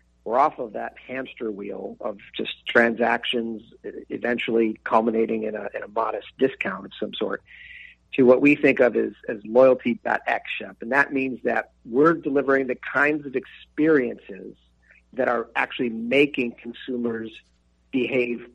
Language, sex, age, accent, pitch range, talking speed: English, male, 50-69, American, 115-135 Hz, 145 wpm